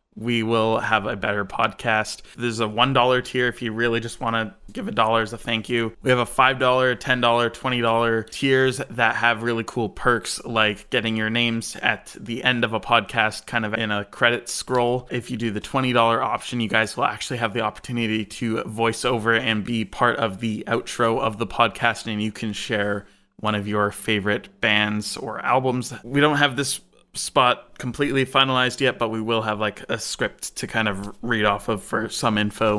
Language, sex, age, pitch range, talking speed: English, male, 20-39, 105-125 Hz, 210 wpm